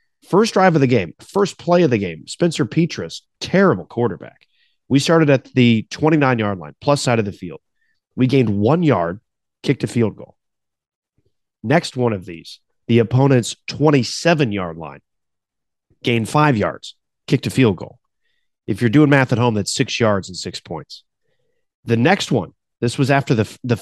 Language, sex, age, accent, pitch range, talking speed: English, male, 30-49, American, 105-140 Hz, 170 wpm